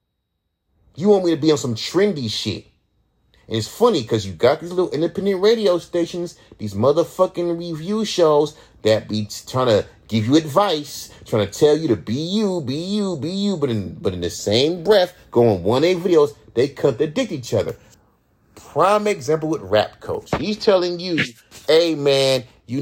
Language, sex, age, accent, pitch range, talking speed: English, male, 30-49, American, 105-165 Hz, 190 wpm